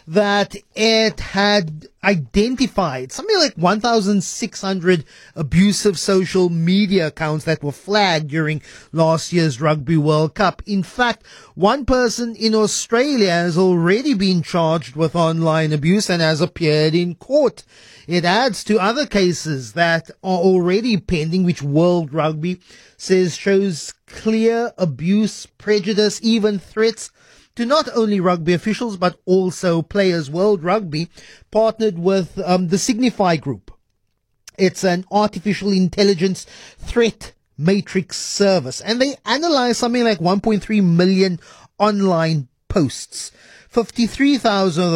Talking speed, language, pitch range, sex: 120 wpm, English, 165-210 Hz, male